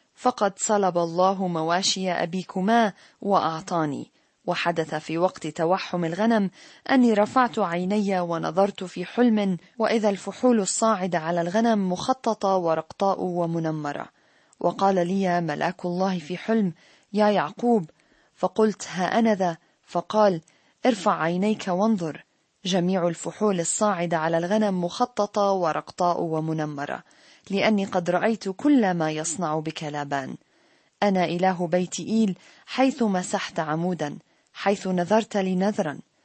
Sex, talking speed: female, 110 wpm